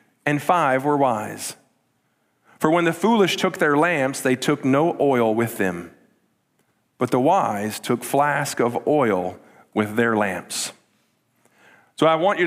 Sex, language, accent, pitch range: male, English, American, 145-180 Hz